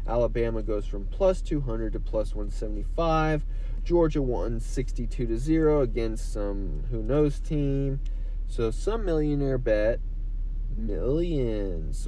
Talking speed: 130 wpm